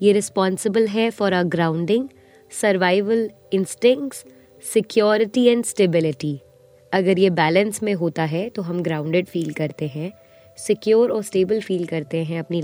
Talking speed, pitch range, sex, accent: 140 wpm, 165-220 Hz, female, native